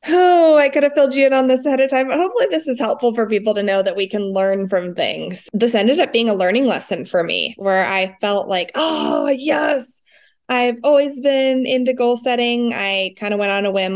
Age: 20-39